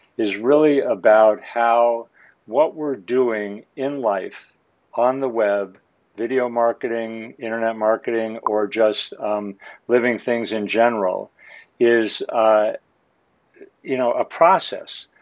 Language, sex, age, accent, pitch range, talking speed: English, male, 60-79, American, 105-120 Hz, 115 wpm